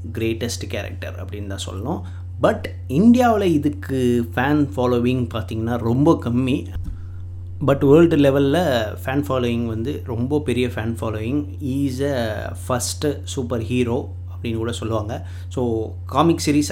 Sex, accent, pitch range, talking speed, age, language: male, native, 95-130 Hz, 125 wpm, 30-49, Tamil